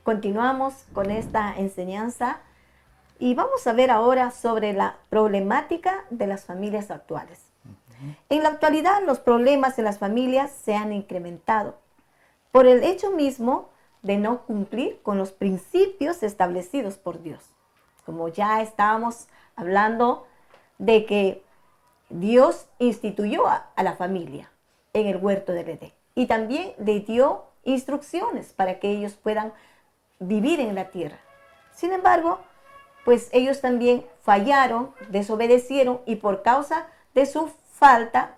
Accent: American